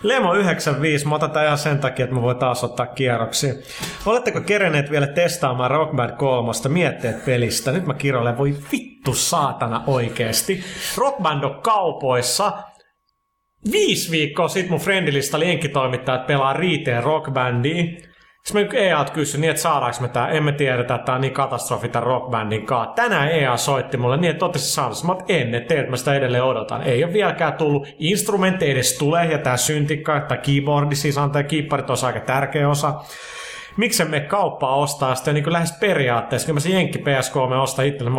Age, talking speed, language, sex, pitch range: 30-49, 175 wpm, Finnish, male, 125-165 Hz